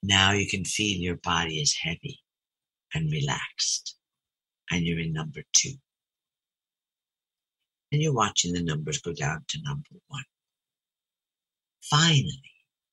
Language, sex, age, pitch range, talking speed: English, male, 60-79, 105-140 Hz, 120 wpm